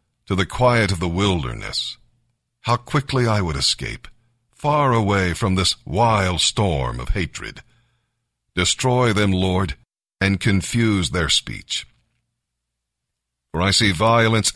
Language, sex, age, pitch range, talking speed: English, male, 50-69, 100-120 Hz, 125 wpm